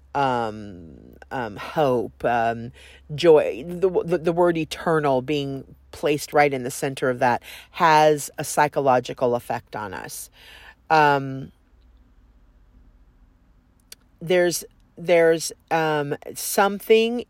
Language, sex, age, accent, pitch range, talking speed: English, female, 40-59, American, 140-180 Hz, 100 wpm